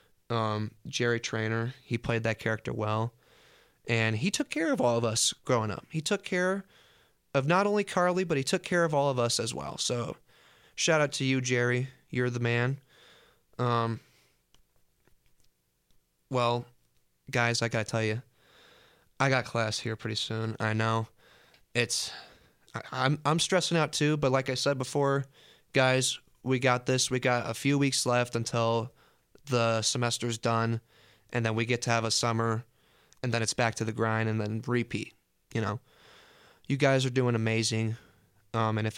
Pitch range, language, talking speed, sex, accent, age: 110-130 Hz, English, 175 wpm, male, American, 20-39